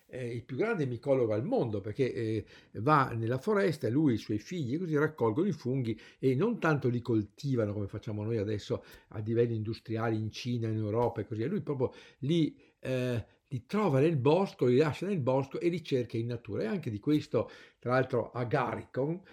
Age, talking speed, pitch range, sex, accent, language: 50-69, 200 wpm, 110-155 Hz, male, native, Italian